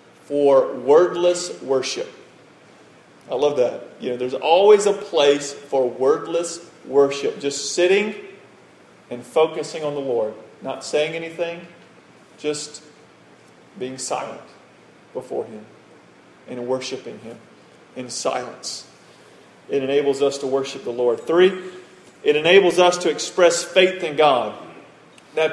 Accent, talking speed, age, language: American, 120 wpm, 40-59, English